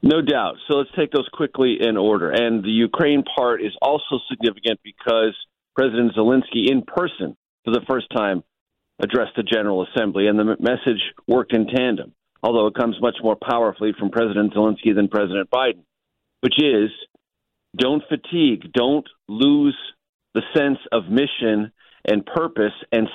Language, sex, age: English, male, 50-69